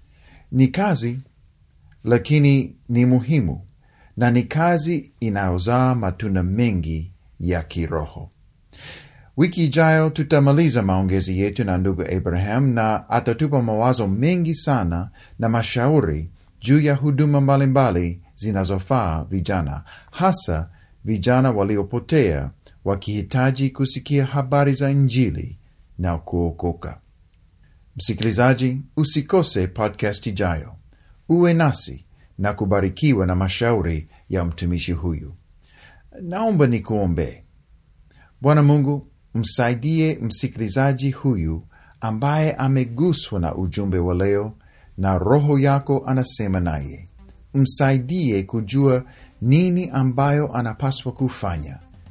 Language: Swahili